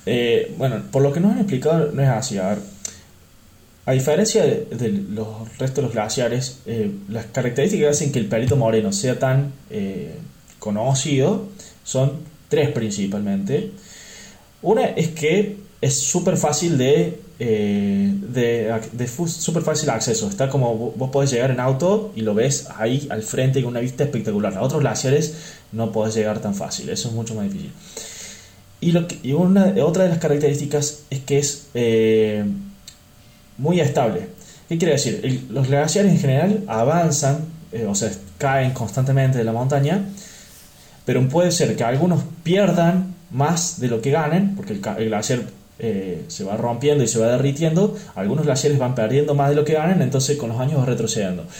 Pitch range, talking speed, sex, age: 115-165 Hz, 175 wpm, male, 20-39